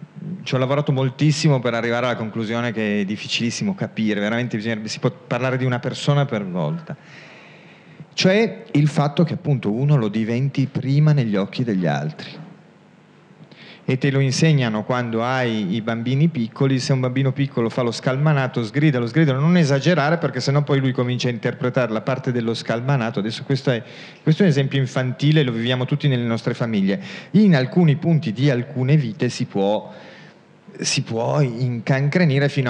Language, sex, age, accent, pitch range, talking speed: Italian, male, 40-59, native, 115-150 Hz, 170 wpm